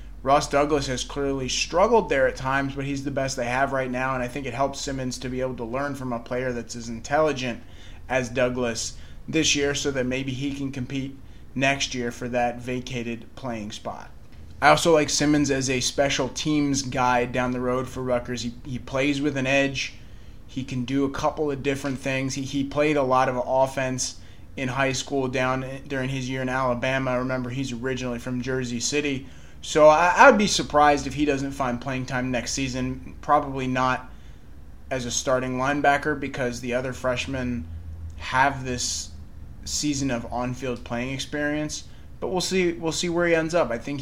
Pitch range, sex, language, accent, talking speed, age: 120-140 Hz, male, English, American, 195 wpm, 30-49